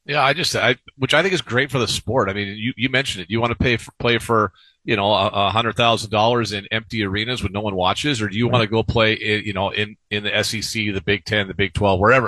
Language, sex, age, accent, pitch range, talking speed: English, male, 40-59, American, 105-130 Hz, 295 wpm